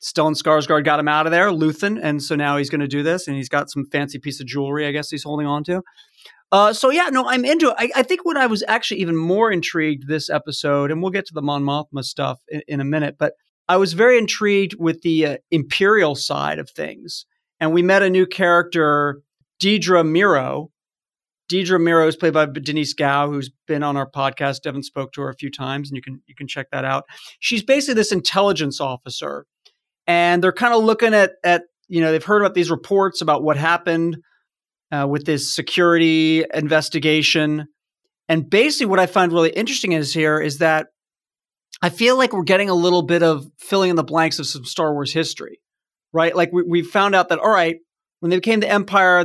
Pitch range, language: 150-185 Hz, English